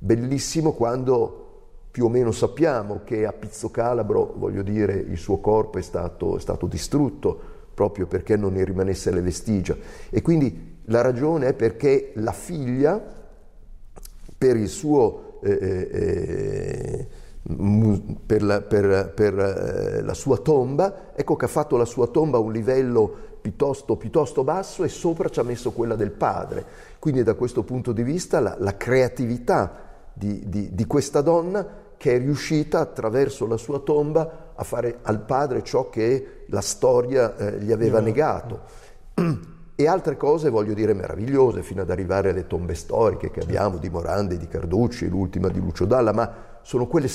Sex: male